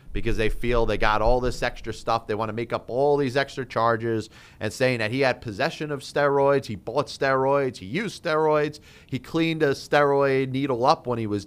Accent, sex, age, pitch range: American, male, 30-49, 115-145 Hz